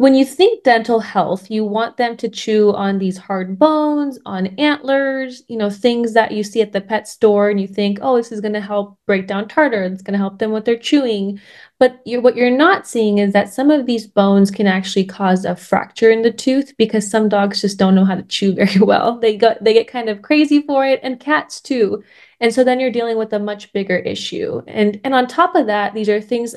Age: 20-39